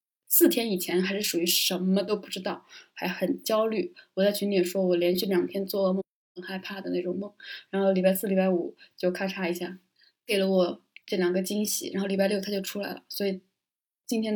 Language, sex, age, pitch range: Chinese, female, 20-39, 185-215 Hz